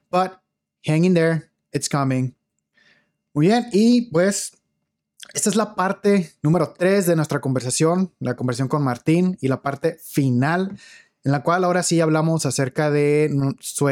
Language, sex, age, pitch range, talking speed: Spanish, male, 20-39, 135-165 Hz, 155 wpm